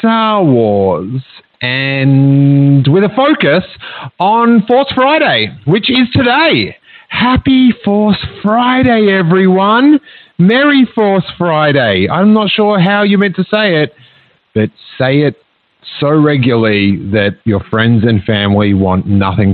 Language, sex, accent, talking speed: English, male, Australian, 125 wpm